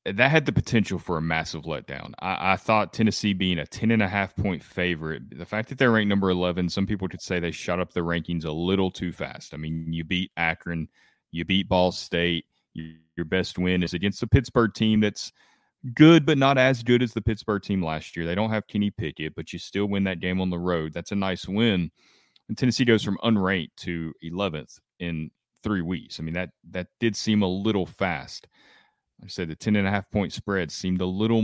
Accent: American